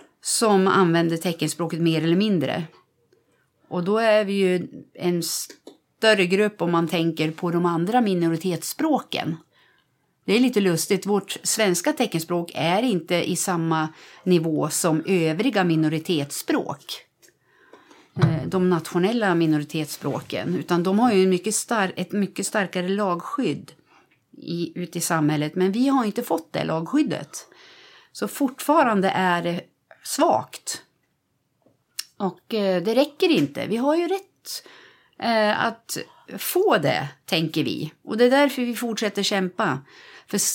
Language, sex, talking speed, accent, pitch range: Swedish, female, 125 wpm, native, 170-225 Hz